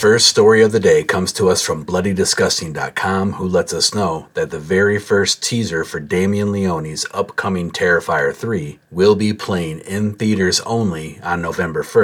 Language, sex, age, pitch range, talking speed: English, male, 40-59, 90-110 Hz, 165 wpm